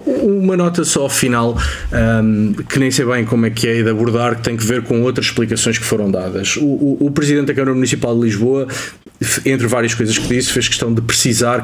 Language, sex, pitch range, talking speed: Portuguese, male, 115-140 Hz, 215 wpm